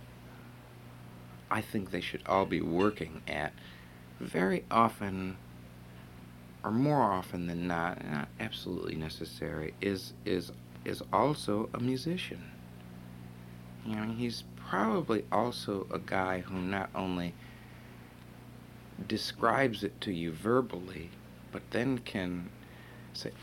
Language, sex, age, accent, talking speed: French, male, 60-79, American, 110 wpm